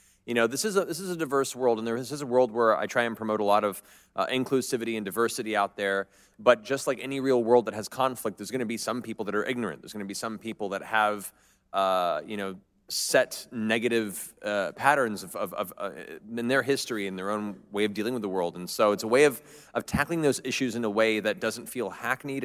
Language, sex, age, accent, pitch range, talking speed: English, male, 30-49, American, 100-125 Hz, 255 wpm